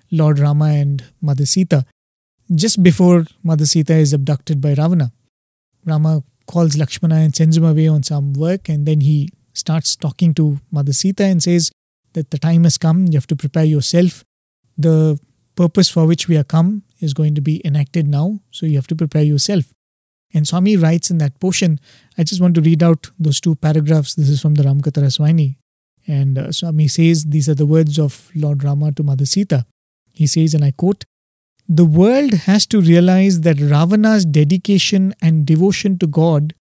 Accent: Indian